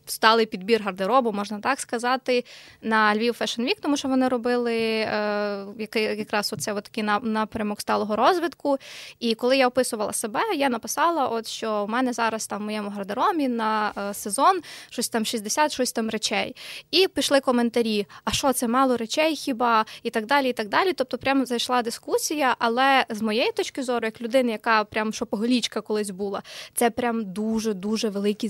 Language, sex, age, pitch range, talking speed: Ukrainian, female, 20-39, 220-265 Hz, 170 wpm